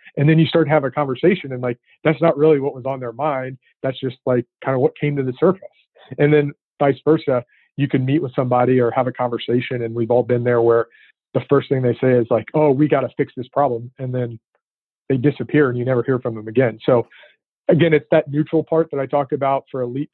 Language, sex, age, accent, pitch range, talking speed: English, male, 40-59, American, 120-140 Hz, 250 wpm